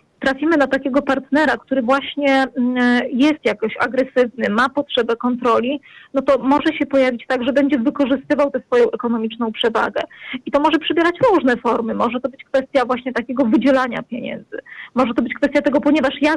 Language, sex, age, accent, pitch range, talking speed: Polish, female, 20-39, native, 245-290 Hz, 170 wpm